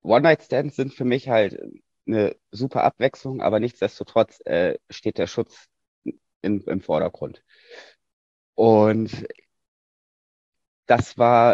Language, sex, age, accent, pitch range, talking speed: German, male, 30-49, German, 95-125 Hz, 100 wpm